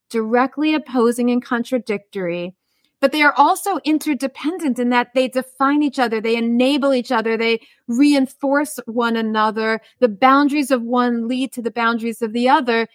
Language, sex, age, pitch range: English, female, 30-49, 215-265 Hz